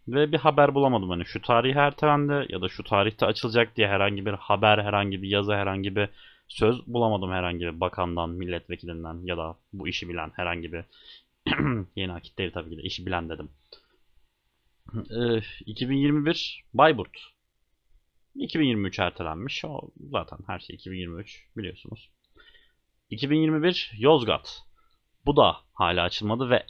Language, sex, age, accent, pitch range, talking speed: Turkish, male, 30-49, native, 90-130 Hz, 135 wpm